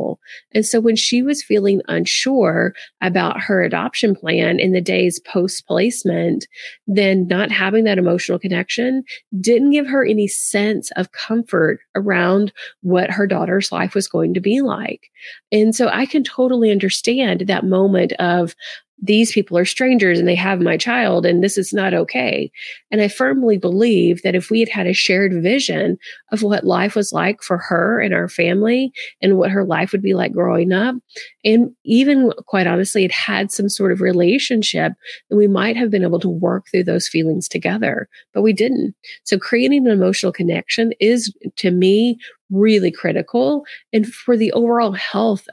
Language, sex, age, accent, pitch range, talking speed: English, female, 30-49, American, 185-230 Hz, 175 wpm